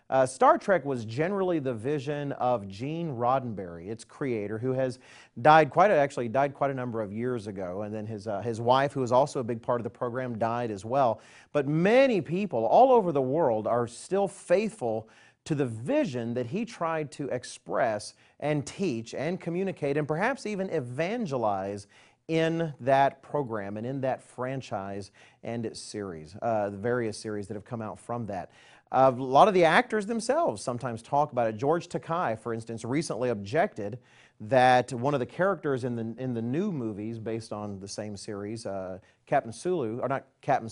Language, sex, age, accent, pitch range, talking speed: English, male, 40-59, American, 115-155 Hz, 190 wpm